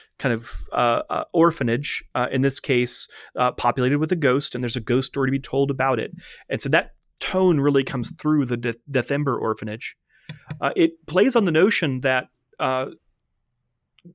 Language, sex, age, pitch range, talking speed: English, male, 30-49, 125-155 Hz, 180 wpm